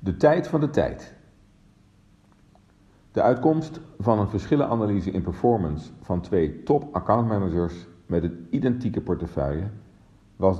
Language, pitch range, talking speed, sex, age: Dutch, 90-110 Hz, 120 wpm, male, 50-69